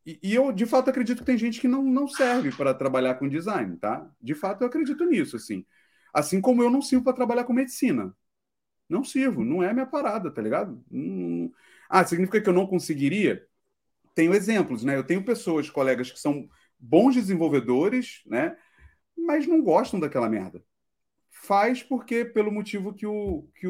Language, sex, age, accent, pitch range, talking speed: Portuguese, male, 30-49, Brazilian, 140-230 Hz, 175 wpm